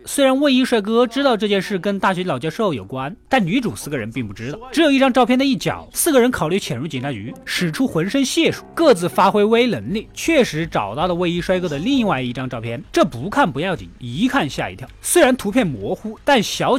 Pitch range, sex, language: 160-255 Hz, male, Chinese